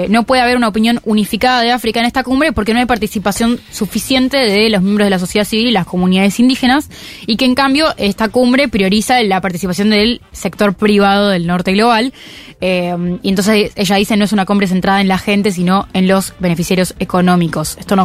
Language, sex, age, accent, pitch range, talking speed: Spanish, female, 20-39, Argentinian, 190-230 Hz, 205 wpm